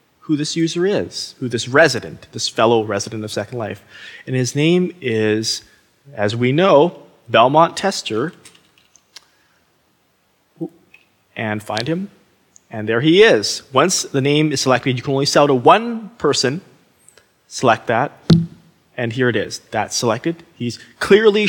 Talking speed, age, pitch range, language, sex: 140 wpm, 30-49, 120-165 Hz, English, male